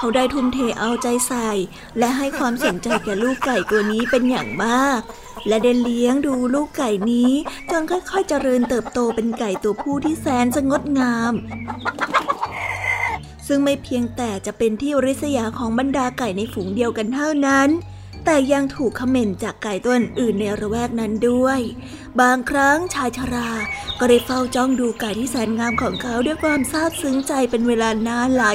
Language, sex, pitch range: Thai, female, 235-275 Hz